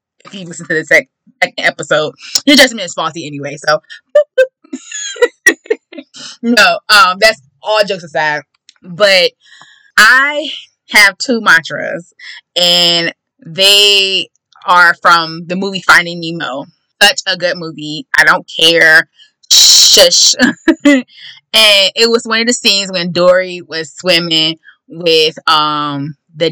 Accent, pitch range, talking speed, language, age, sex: American, 170-260 Hz, 120 wpm, English, 20-39, female